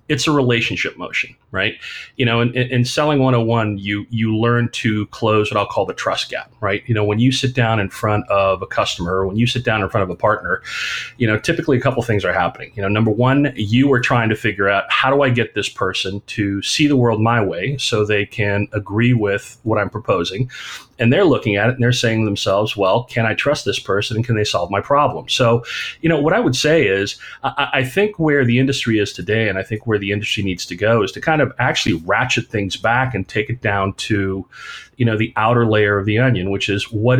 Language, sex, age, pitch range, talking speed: English, male, 30-49, 105-125 Hz, 245 wpm